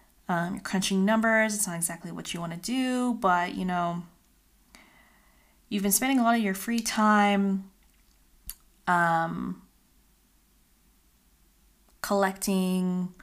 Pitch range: 175-210 Hz